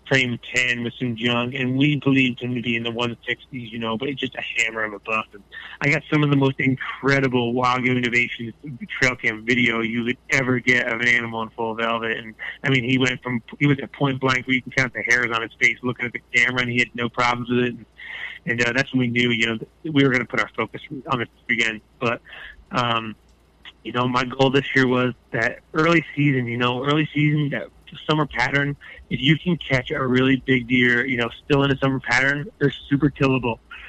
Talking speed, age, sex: 245 wpm, 20-39, male